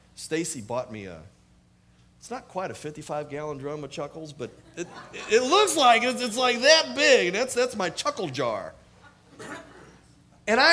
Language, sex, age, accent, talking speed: English, male, 40-59, American, 175 wpm